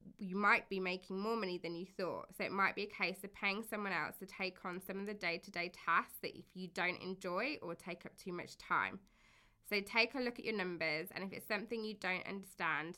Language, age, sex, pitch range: English, 20-39, female, 175-210 Hz